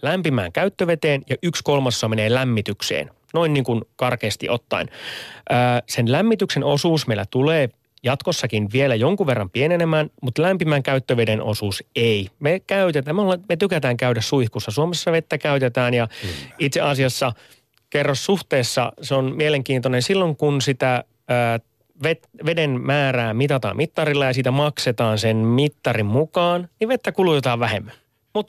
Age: 30-49